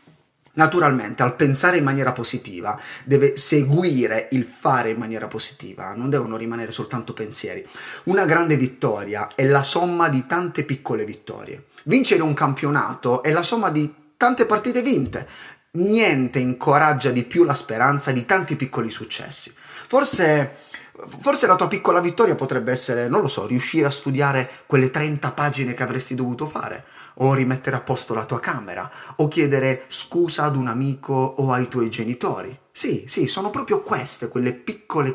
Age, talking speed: 30-49, 160 wpm